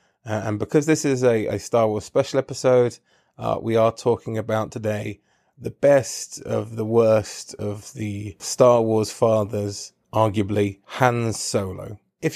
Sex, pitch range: male, 105-120 Hz